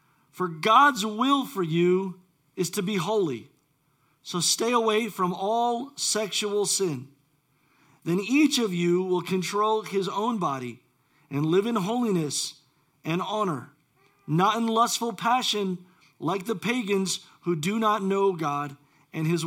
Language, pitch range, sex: English, 150-220 Hz, male